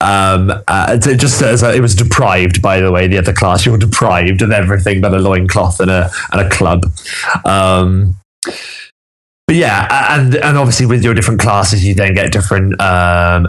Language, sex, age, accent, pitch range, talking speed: English, male, 20-39, British, 90-115 Hz, 185 wpm